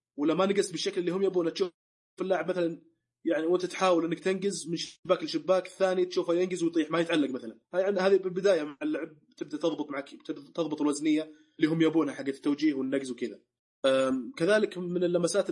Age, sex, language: 20-39, male, Arabic